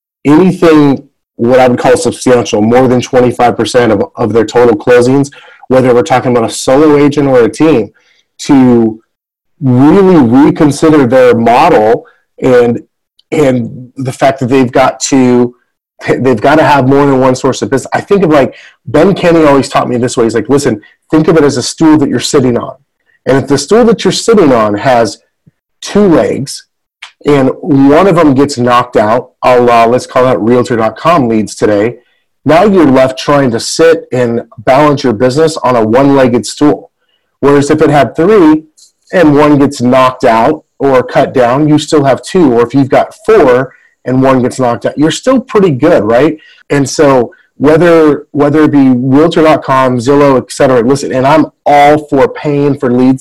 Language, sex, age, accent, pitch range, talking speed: English, male, 30-49, American, 125-155 Hz, 180 wpm